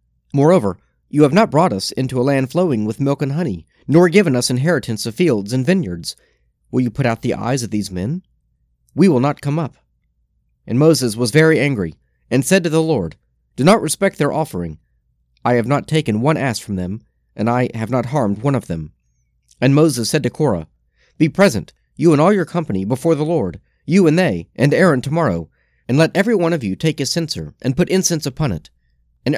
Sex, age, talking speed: male, 40-59, 210 wpm